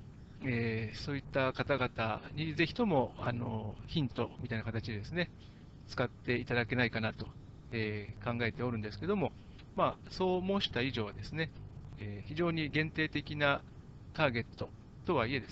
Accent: native